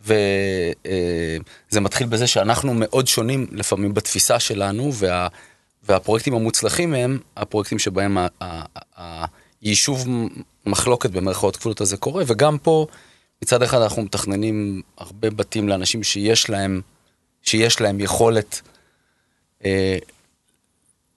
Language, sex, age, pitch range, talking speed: Hebrew, male, 30-49, 95-120 Hz, 100 wpm